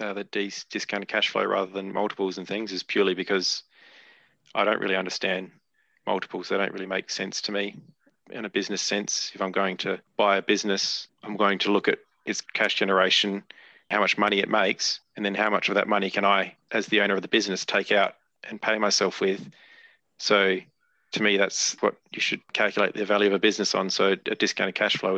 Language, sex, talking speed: English, male, 210 wpm